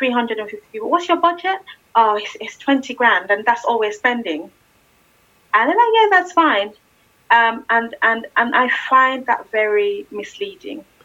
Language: English